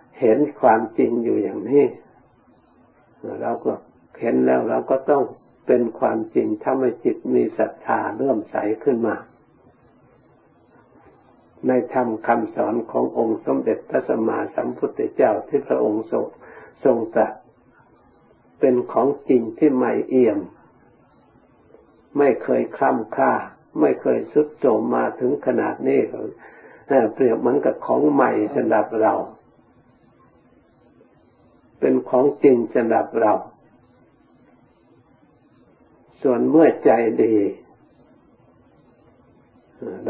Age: 60-79